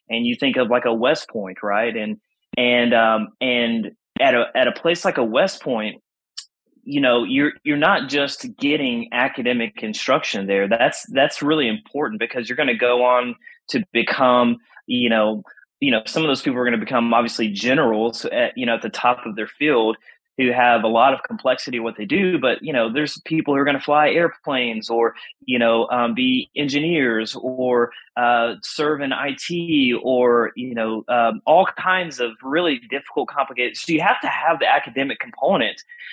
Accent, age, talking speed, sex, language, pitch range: American, 30-49, 195 wpm, male, English, 120-155 Hz